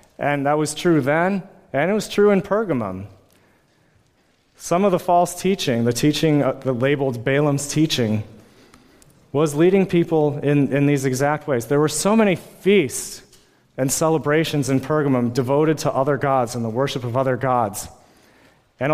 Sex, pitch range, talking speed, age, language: male, 130-170 Hz, 160 wpm, 30-49, English